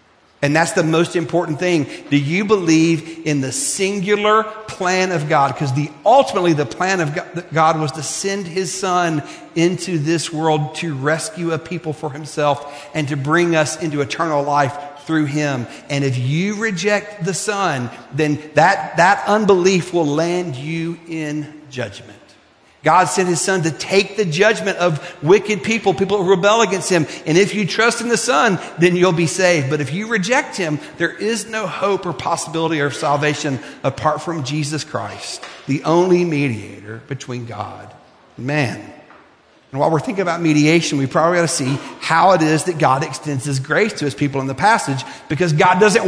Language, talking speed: English, 180 wpm